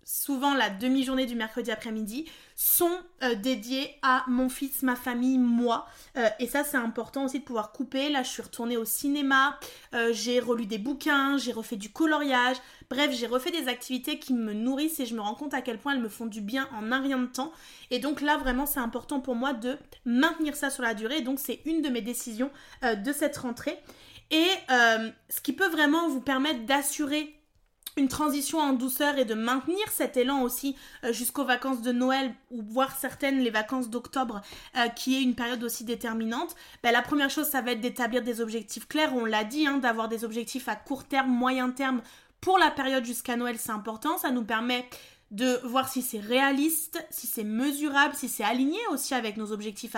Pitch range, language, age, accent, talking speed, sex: 235-280 Hz, French, 20-39, French, 210 wpm, female